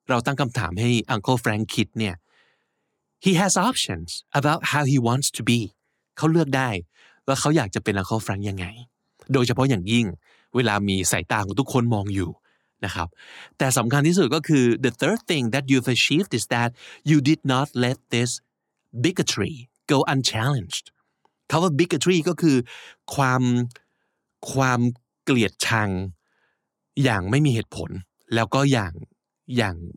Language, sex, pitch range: Thai, male, 110-145 Hz